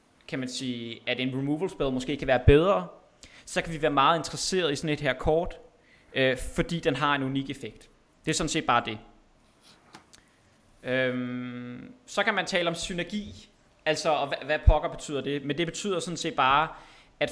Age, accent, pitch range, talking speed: 20-39, native, 125-155 Hz, 185 wpm